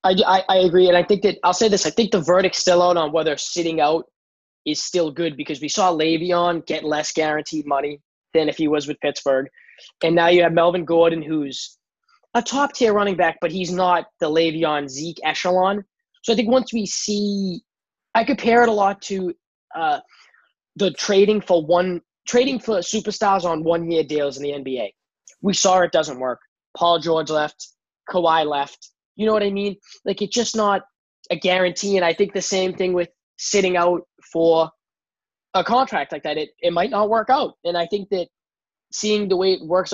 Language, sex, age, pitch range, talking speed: English, male, 20-39, 160-200 Hz, 195 wpm